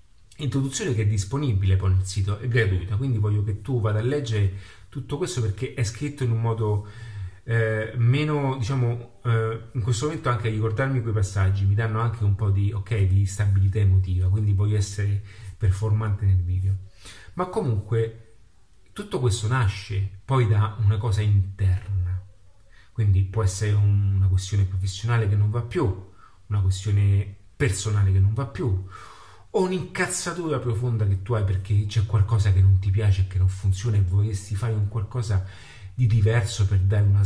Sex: male